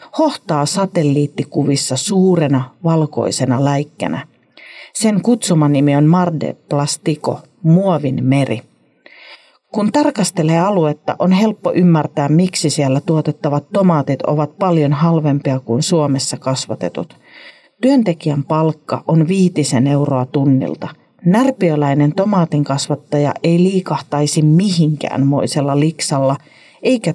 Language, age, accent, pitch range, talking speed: Finnish, 40-59, native, 140-175 Hz, 95 wpm